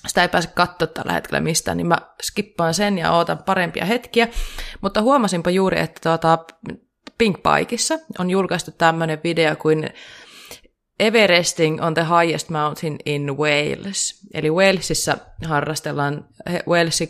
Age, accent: 20-39, native